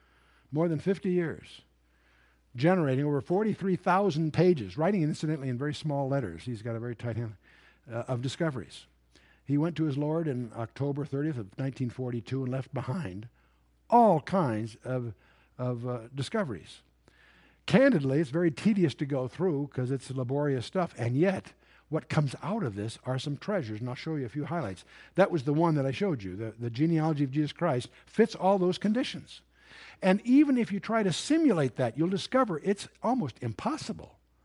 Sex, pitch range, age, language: male, 125-185 Hz, 60-79, English